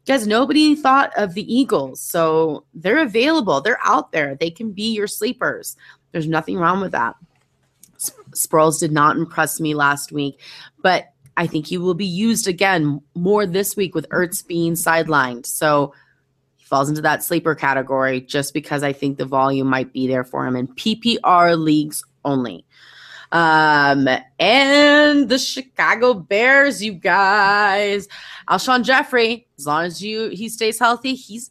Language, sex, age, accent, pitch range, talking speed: English, female, 20-39, American, 145-210 Hz, 160 wpm